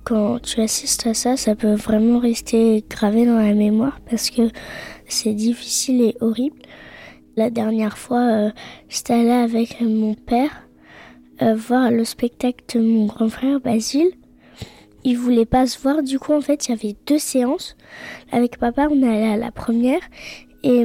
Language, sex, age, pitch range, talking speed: French, female, 20-39, 225-250 Hz, 175 wpm